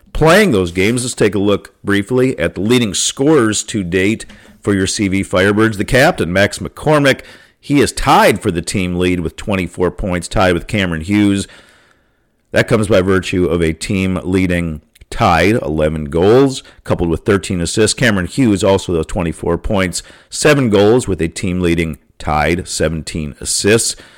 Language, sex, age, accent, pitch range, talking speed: English, male, 50-69, American, 85-105 Hz, 165 wpm